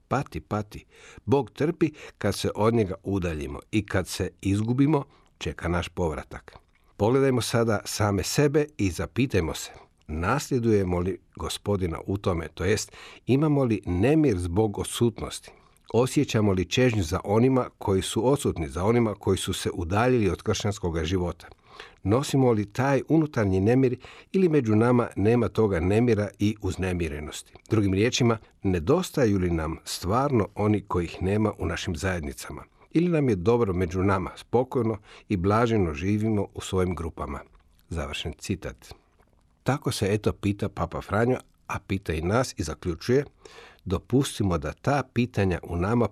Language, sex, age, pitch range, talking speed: Croatian, male, 60-79, 90-120 Hz, 145 wpm